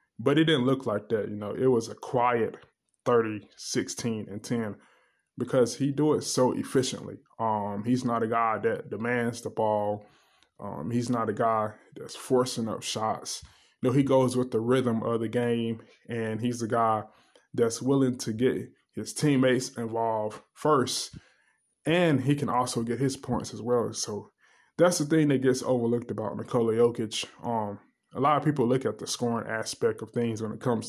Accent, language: American, English